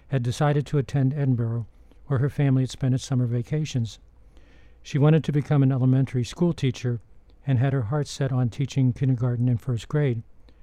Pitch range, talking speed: 120-140 Hz, 180 wpm